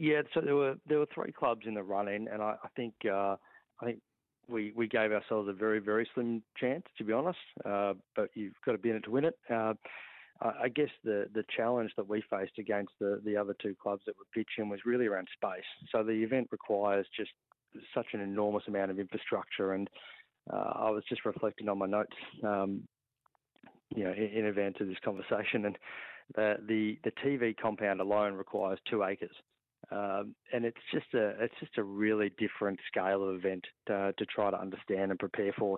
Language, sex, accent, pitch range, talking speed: English, male, Australian, 100-110 Hz, 205 wpm